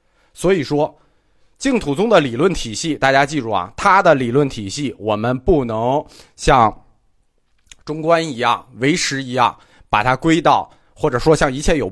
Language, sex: Chinese, male